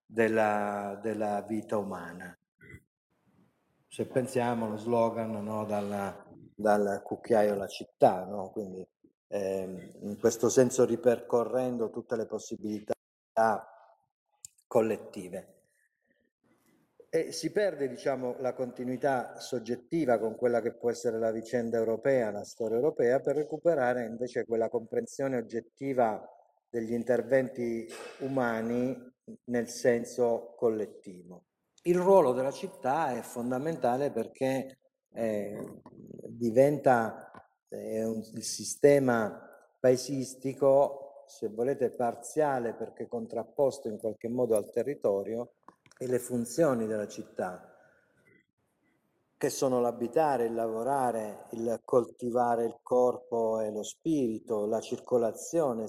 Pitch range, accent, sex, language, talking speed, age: 110-130 Hz, native, male, Italian, 105 wpm, 50-69